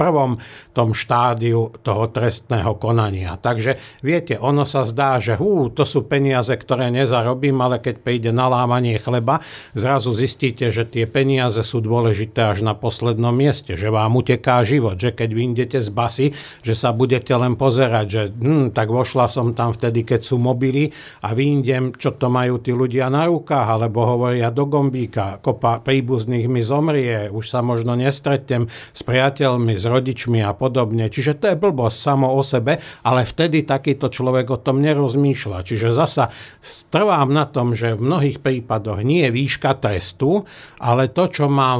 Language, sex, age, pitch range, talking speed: Slovak, male, 50-69, 115-140 Hz, 165 wpm